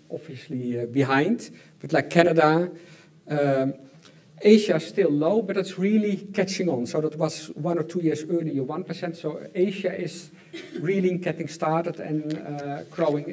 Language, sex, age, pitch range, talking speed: English, male, 50-69, 145-175 Hz, 150 wpm